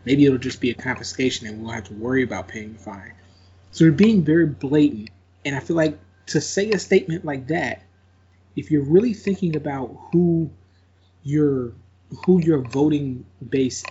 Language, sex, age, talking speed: English, male, 20-39, 175 wpm